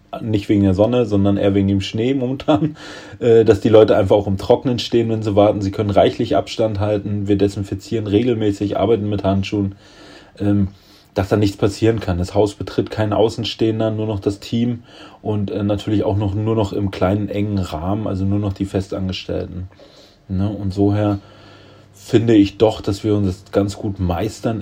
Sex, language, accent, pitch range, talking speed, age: male, German, German, 100-110 Hz, 190 wpm, 30-49